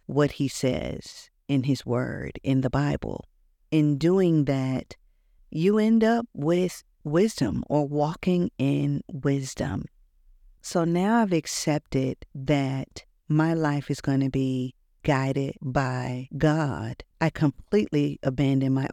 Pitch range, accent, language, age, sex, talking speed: 140-170 Hz, American, English, 40-59, female, 125 wpm